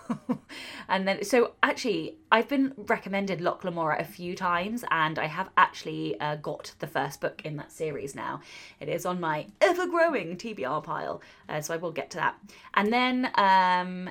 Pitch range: 170-245 Hz